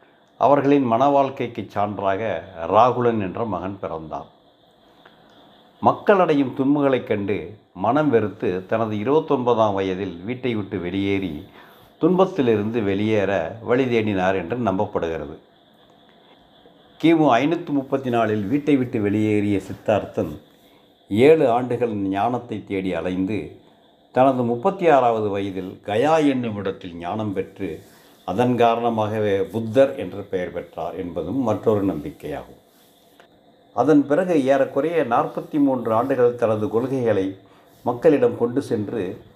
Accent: native